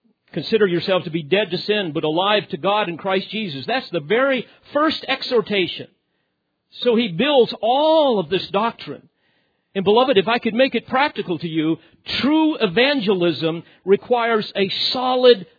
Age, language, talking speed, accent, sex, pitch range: 50-69, English, 160 wpm, American, male, 190-255 Hz